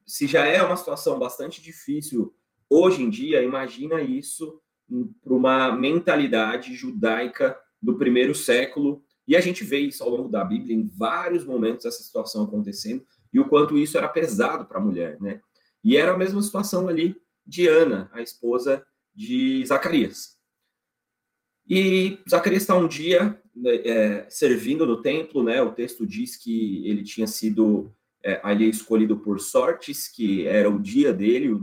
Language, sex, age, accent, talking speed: Portuguese, male, 30-49, Brazilian, 160 wpm